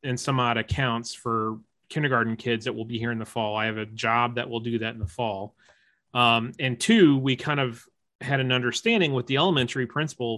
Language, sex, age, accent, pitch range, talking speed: English, male, 30-49, American, 115-135 Hz, 220 wpm